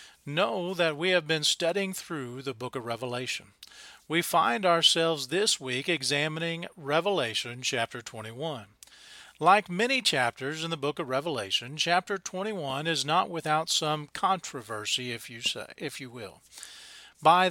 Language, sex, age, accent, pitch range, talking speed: English, male, 40-59, American, 135-175 Hz, 135 wpm